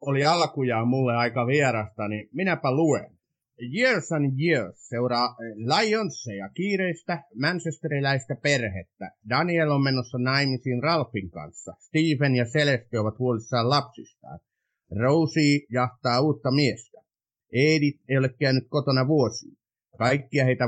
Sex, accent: male, native